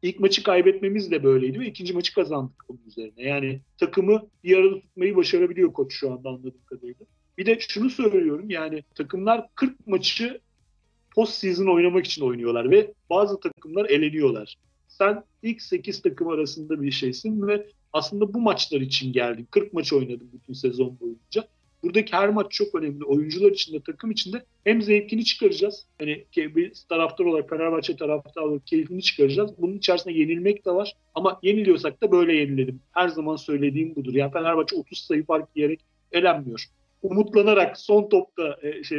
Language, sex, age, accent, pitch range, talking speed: Turkish, male, 40-59, native, 145-215 Hz, 160 wpm